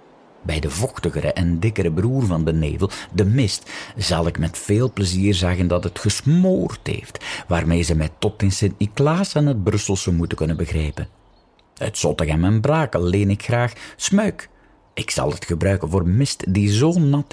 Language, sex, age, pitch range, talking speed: Dutch, male, 50-69, 85-120 Hz, 175 wpm